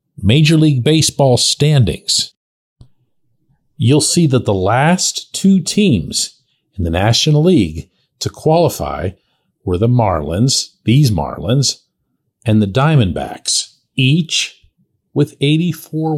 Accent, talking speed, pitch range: American, 105 wpm, 105-160 Hz